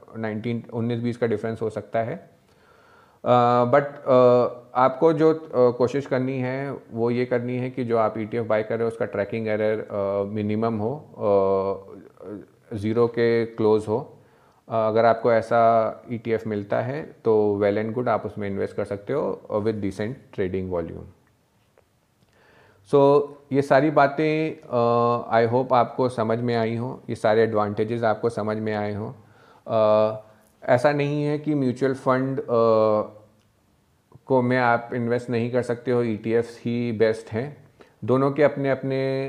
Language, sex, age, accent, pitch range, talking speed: Hindi, male, 40-59, native, 110-130 Hz, 150 wpm